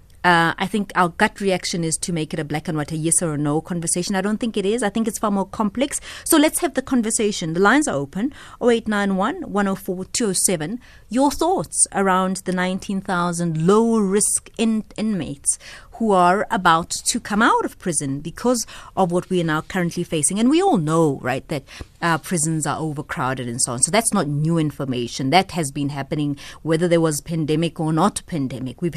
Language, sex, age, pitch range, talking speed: English, female, 30-49, 160-225 Hz, 200 wpm